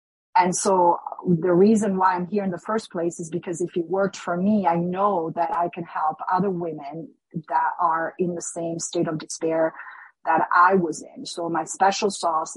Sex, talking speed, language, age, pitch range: female, 200 wpm, English, 40-59, 165-195 Hz